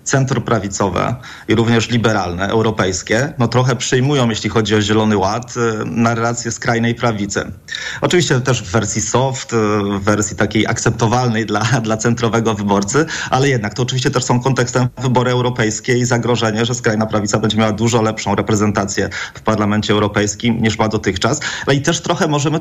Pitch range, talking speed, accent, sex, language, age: 110-130 Hz, 155 wpm, native, male, Polish, 30-49